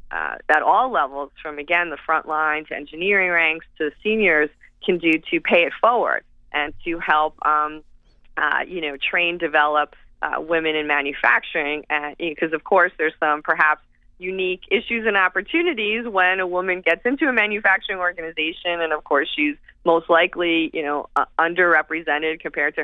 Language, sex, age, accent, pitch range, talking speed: English, female, 20-39, American, 150-180 Hz, 170 wpm